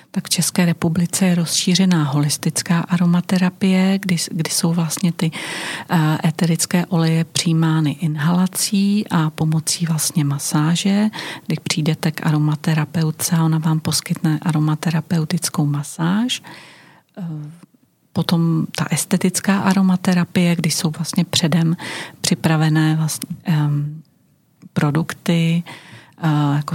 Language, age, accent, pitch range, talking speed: Czech, 40-59, native, 155-175 Hz, 90 wpm